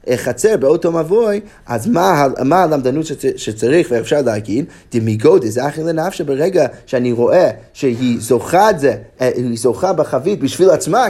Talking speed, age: 140 wpm, 30-49